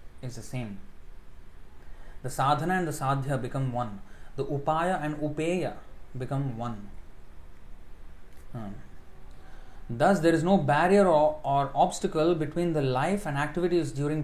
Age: 30-49